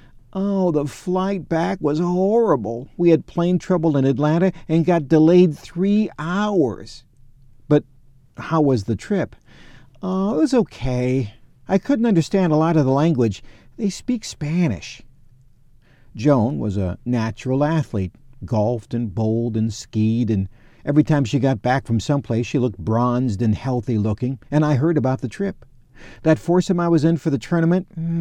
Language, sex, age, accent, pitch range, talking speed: English, male, 50-69, American, 125-180 Hz, 155 wpm